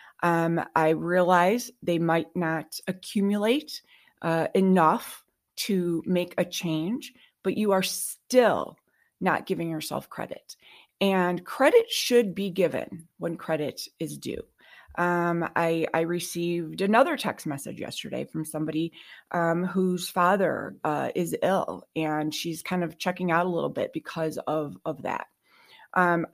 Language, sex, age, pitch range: English, female, 30-49, 165-190 Hz